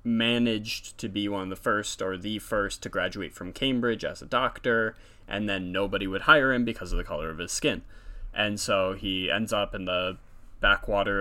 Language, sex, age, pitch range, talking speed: English, male, 20-39, 95-105 Hz, 205 wpm